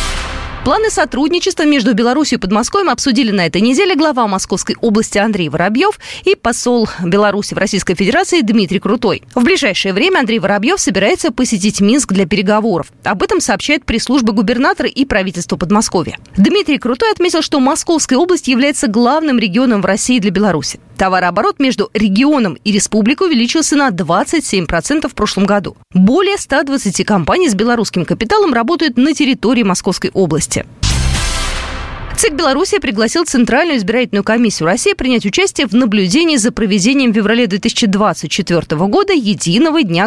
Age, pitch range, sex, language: 20-39, 195-295 Hz, female, Russian